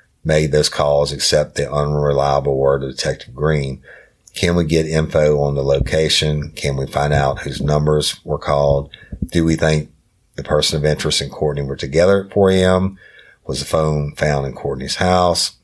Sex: male